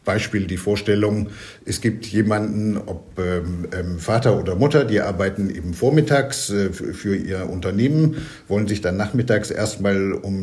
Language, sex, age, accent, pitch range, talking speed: German, male, 50-69, German, 95-110 Hz, 150 wpm